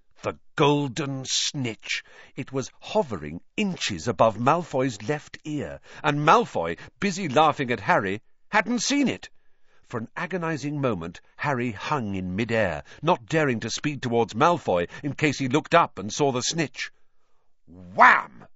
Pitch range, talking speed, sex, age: 120-175 Hz, 140 wpm, male, 50-69